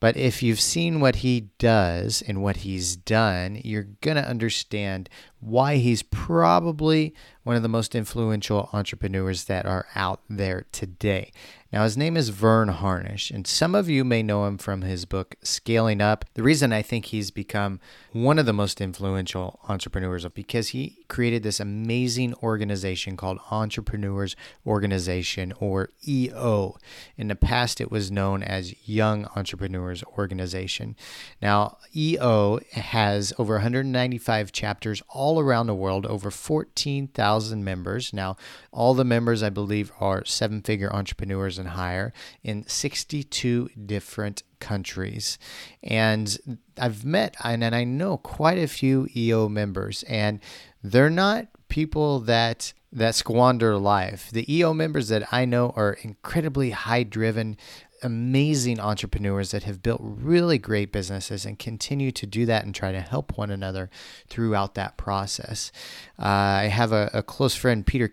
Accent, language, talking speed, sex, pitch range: American, English, 150 wpm, male, 100-120 Hz